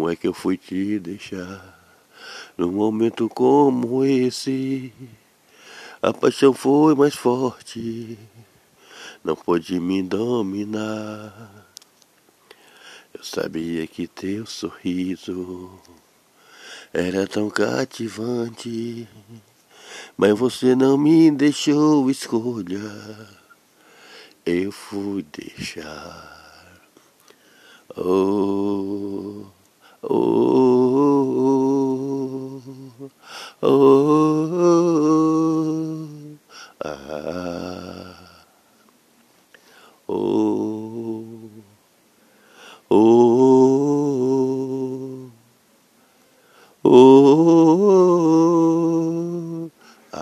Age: 60-79